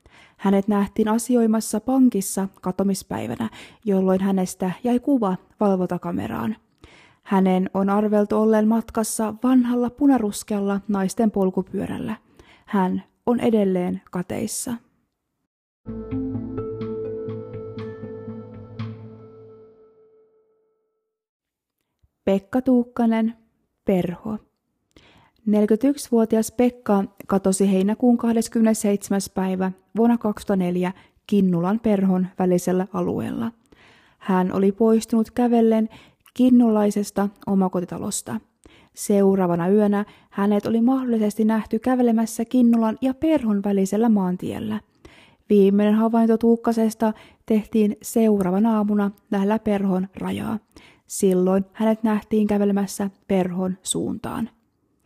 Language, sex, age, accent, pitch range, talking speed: Finnish, female, 20-39, native, 190-230 Hz, 75 wpm